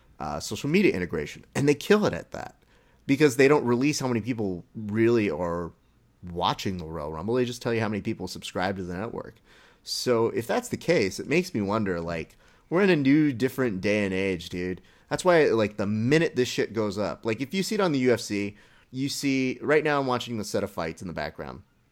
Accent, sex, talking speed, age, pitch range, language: American, male, 225 wpm, 30-49, 95-125 Hz, English